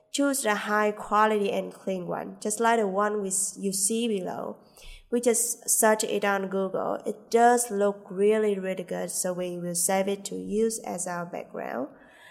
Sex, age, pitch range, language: female, 20-39, 190-230 Hz, English